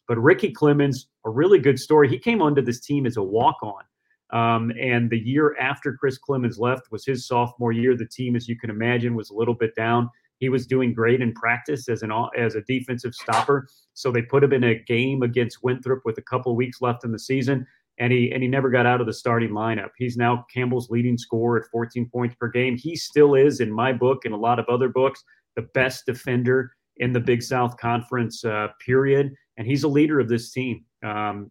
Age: 30-49